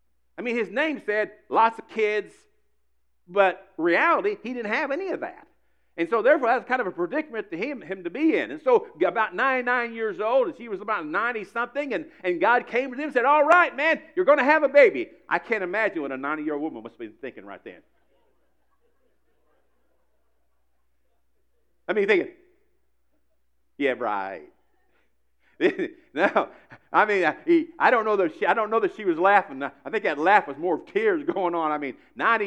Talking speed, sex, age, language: 200 wpm, male, 50-69, English